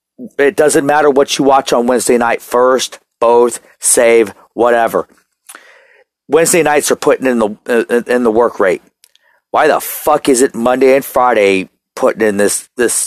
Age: 40-59